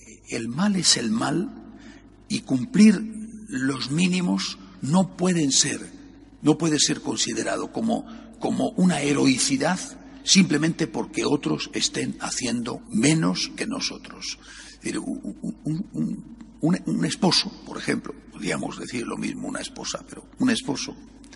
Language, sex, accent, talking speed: Spanish, male, Spanish, 125 wpm